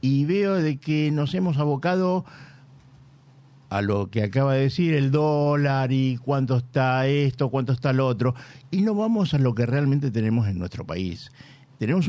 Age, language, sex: 60-79, Spanish, male